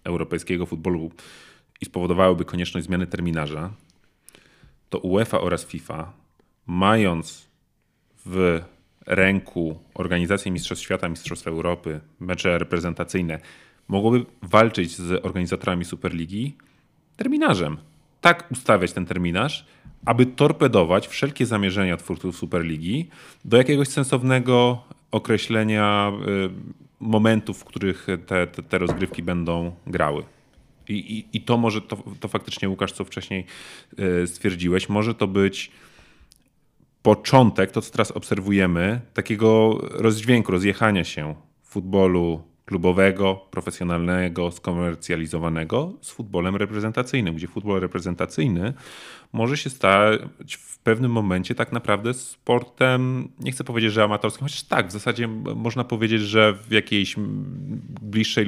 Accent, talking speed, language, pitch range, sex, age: native, 110 wpm, Polish, 90-115 Hz, male, 30-49